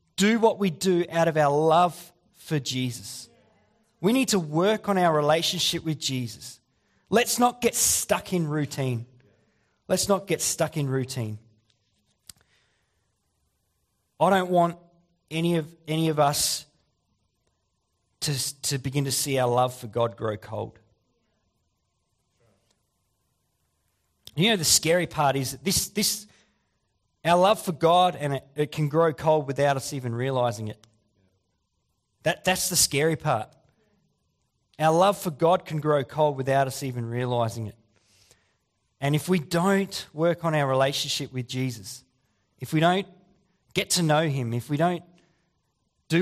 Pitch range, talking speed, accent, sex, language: 120-165 Hz, 145 wpm, Australian, male, English